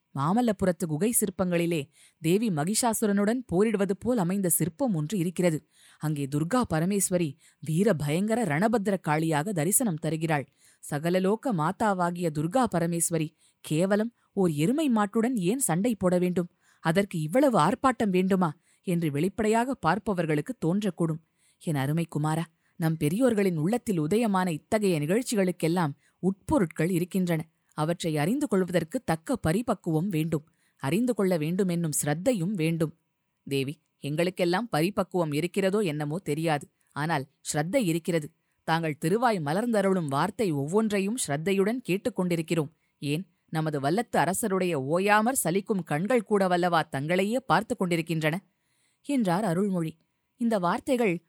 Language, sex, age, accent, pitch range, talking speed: Tamil, female, 20-39, native, 160-205 Hz, 105 wpm